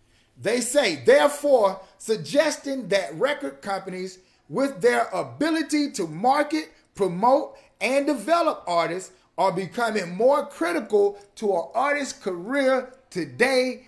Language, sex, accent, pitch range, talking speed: English, male, American, 185-270 Hz, 110 wpm